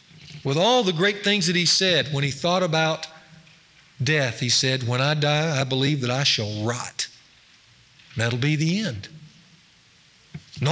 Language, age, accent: English, 50-69, American